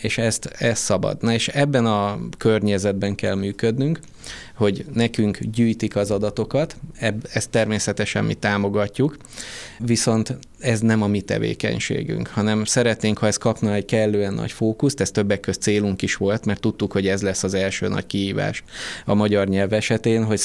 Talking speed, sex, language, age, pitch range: 160 wpm, male, Hungarian, 20-39, 95-115 Hz